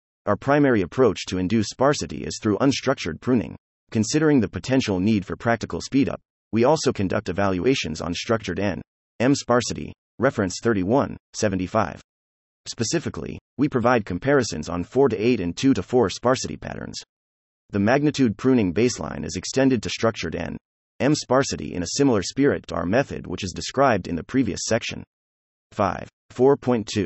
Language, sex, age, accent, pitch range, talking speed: English, male, 30-49, American, 90-125 Hz, 150 wpm